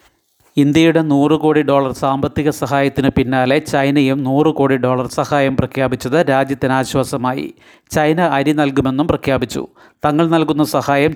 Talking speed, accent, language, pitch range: 100 wpm, native, Malayalam, 135-150 Hz